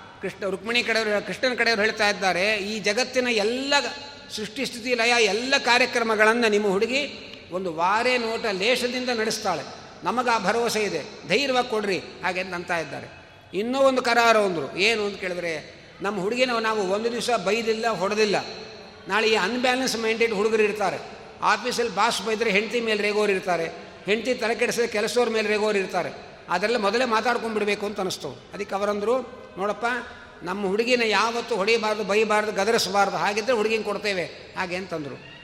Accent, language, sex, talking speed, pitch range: native, Kannada, male, 135 wpm, 200-240 Hz